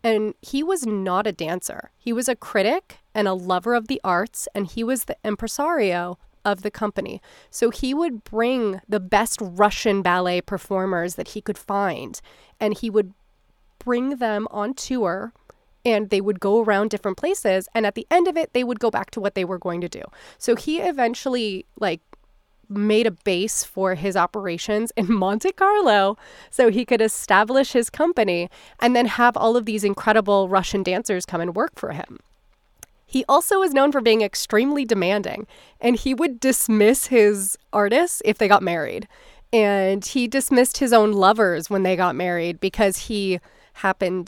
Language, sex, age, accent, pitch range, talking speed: English, female, 30-49, American, 195-240 Hz, 180 wpm